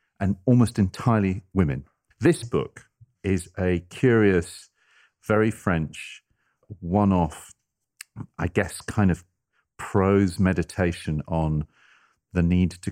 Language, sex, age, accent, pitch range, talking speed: English, male, 40-59, British, 80-100 Hz, 100 wpm